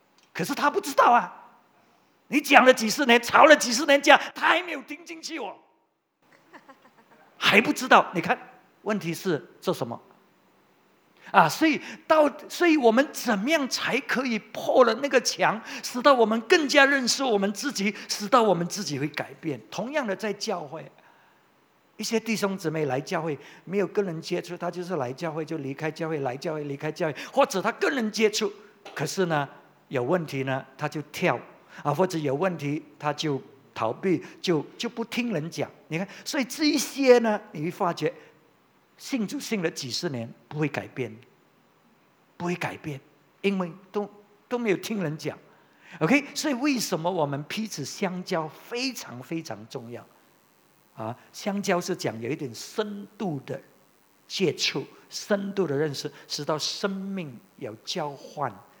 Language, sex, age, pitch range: English, male, 50-69, 155-245 Hz